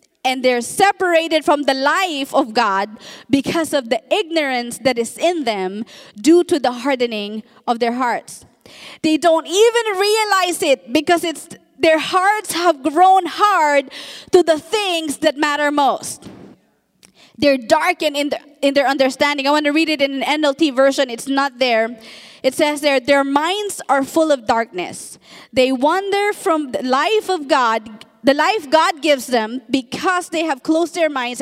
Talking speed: 165 wpm